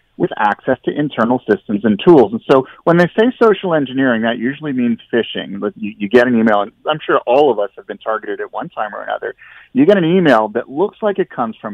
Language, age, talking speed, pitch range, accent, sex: English, 40-59, 245 wpm, 105-155 Hz, American, male